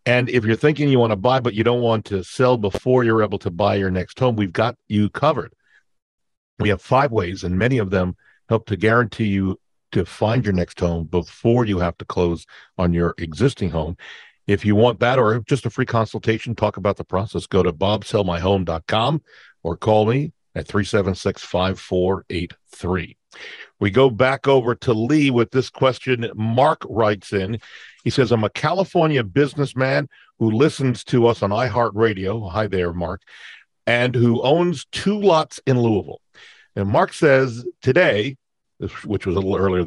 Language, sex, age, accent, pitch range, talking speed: English, male, 50-69, American, 100-130 Hz, 185 wpm